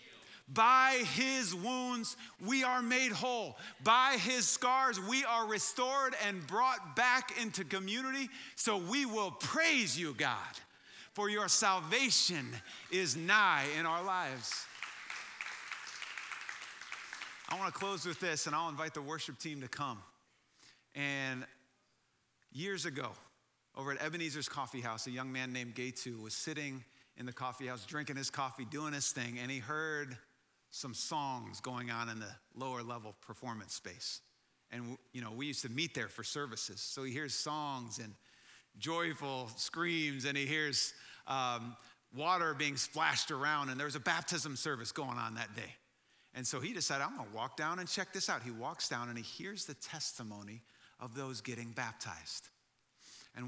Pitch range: 125-180 Hz